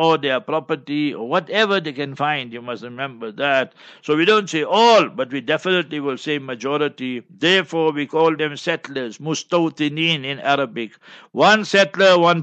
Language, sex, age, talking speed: English, male, 60-79, 160 wpm